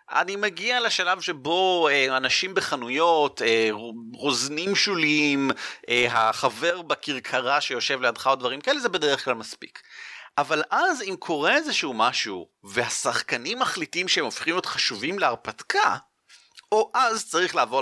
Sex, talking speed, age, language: male, 120 wpm, 30-49, Hebrew